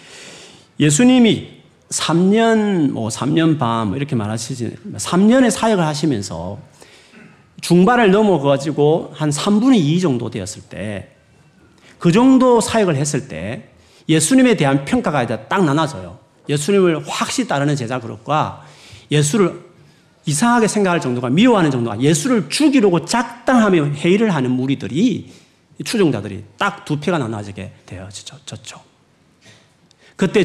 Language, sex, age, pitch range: Korean, male, 40-59, 125-200 Hz